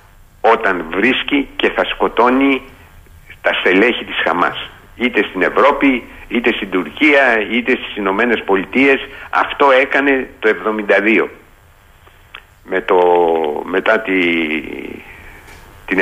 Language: Greek